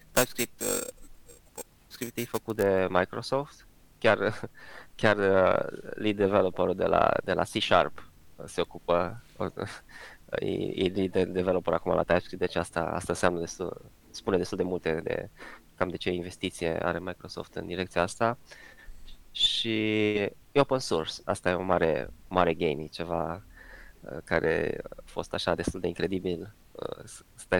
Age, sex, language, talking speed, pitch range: 20-39, male, Romanian, 135 wpm, 85-110 Hz